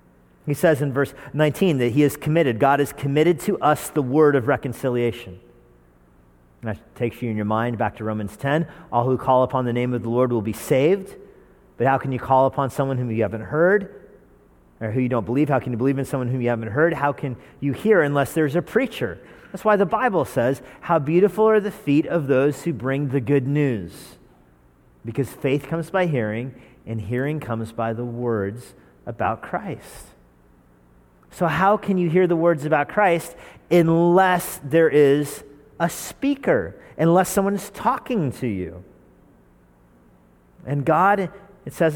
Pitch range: 110-155 Hz